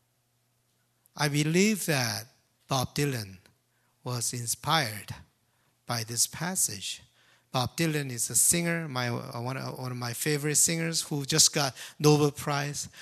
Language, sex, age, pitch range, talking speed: English, male, 50-69, 125-185 Hz, 130 wpm